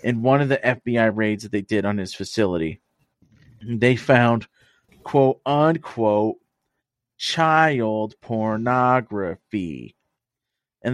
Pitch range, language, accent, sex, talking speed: 110-145 Hz, English, American, male, 105 wpm